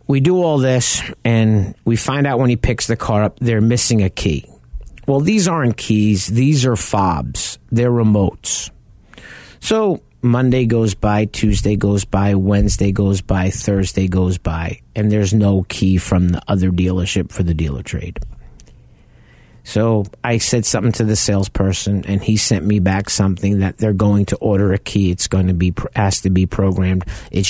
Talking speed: 175 wpm